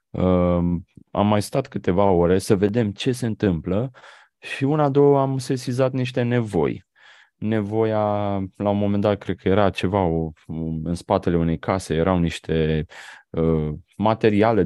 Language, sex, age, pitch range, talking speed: Romanian, male, 30-49, 90-130 Hz, 135 wpm